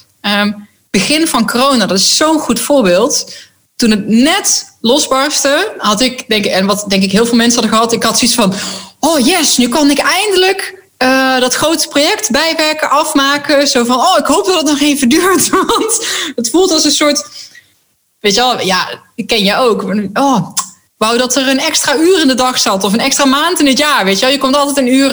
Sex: female